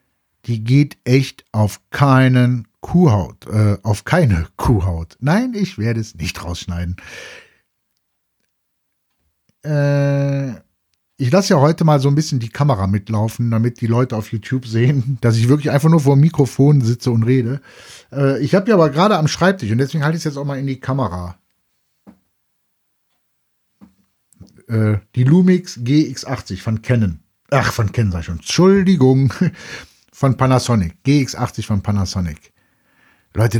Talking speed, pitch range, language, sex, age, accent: 145 wpm, 110-150 Hz, German, male, 60-79, German